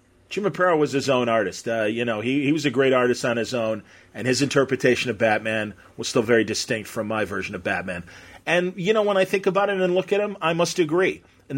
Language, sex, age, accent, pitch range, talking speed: English, male, 40-59, American, 120-145 Hz, 250 wpm